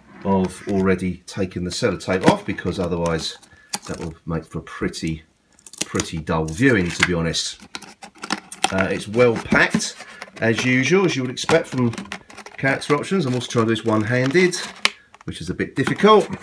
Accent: British